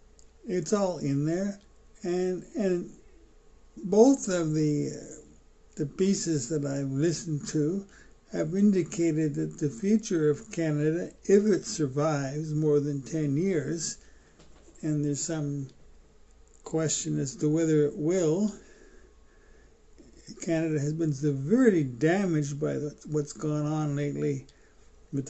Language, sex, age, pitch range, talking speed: English, male, 60-79, 145-185 Hz, 120 wpm